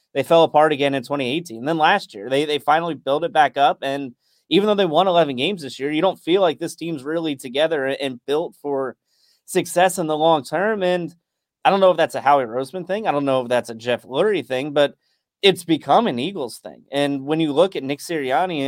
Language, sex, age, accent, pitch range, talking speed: English, male, 30-49, American, 140-180 Hz, 235 wpm